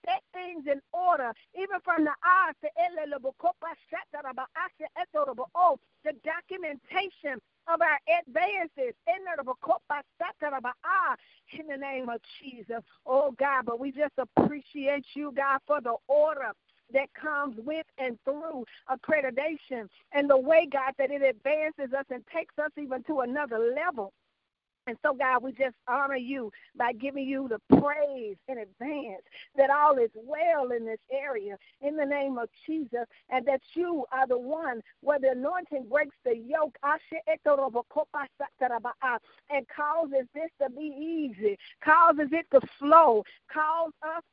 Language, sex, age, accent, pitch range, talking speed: English, female, 50-69, American, 265-315 Hz, 135 wpm